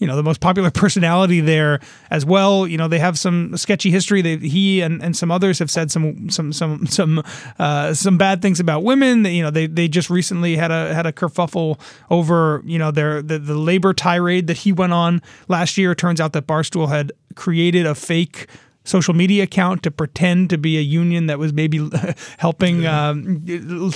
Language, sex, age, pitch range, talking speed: English, male, 30-49, 155-180 Hz, 205 wpm